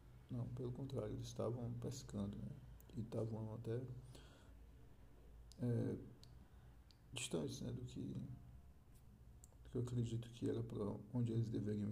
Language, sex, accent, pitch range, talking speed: Portuguese, male, Brazilian, 110-130 Hz, 115 wpm